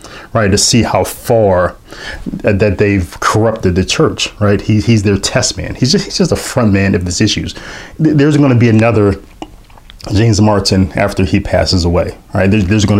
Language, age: English, 30-49